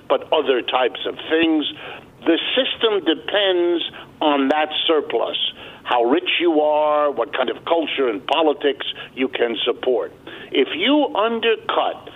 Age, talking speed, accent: 60-79, 135 wpm, American